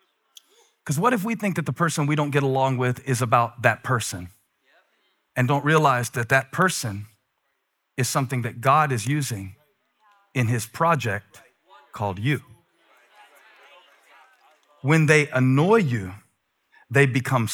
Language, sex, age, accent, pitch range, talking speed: English, male, 50-69, American, 115-160 Hz, 135 wpm